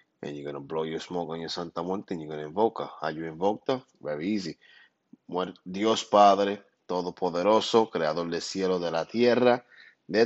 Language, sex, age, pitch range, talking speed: English, male, 30-49, 85-115 Hz, 200 wpm